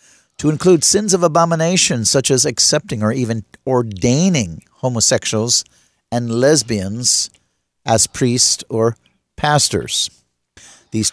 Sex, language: male, English